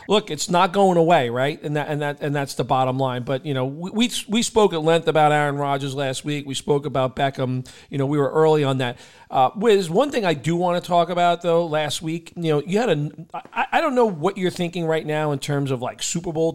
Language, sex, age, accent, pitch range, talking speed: English, male, 40-59, American, 140-170 Hz, 265 wpm